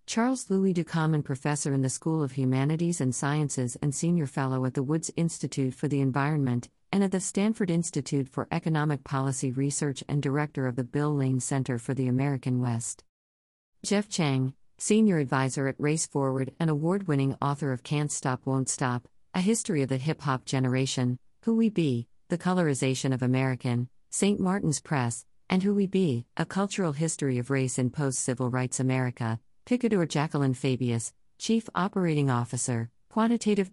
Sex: female